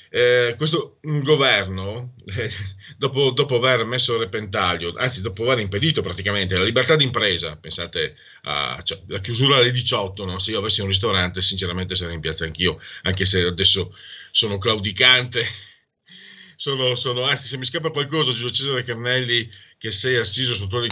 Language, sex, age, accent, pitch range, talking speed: Italian, male, 40-59, native, 100-130 Hz, 160 wpm